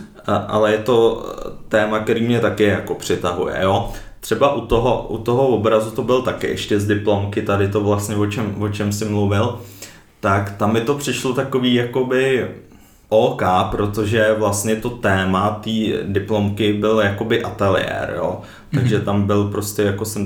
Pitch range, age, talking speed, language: 100-110 Hz, 20-39, 165 wpm, Czech